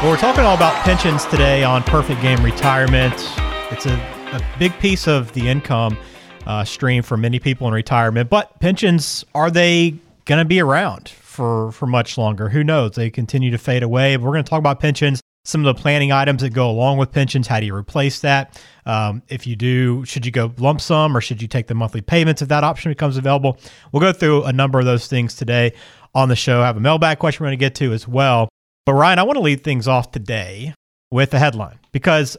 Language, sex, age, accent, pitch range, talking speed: English, male, 40-59, American, 120-145 Hz, 230 wpm